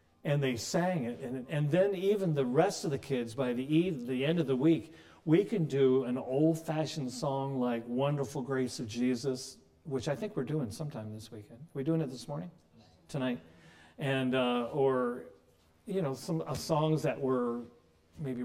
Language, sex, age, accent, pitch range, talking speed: English, male, 50-69, American, 110-145 Hz, 190 wpm